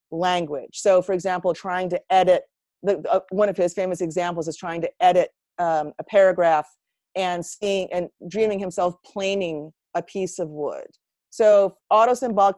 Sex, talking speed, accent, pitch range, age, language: female, 160 wpm, American, 180-235 Hz, 40-59, English